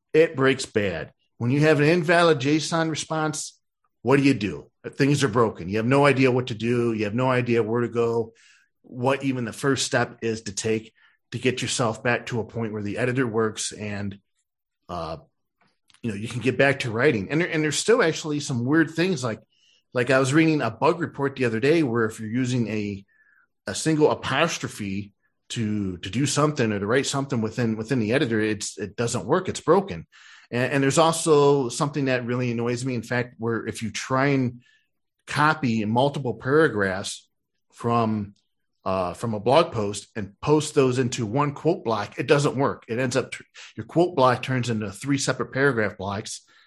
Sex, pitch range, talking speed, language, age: male, 110-140 Hz, 205 wpm, English, 40-59